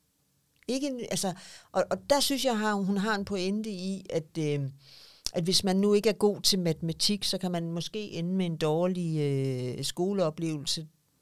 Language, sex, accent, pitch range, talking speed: Danish, female, native, 155-195 Hz, 185 wpm